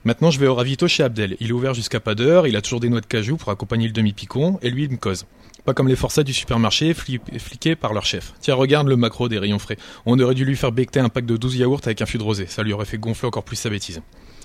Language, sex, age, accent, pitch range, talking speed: French, male, 20-39, French, 110-140 Hz, 300 wpm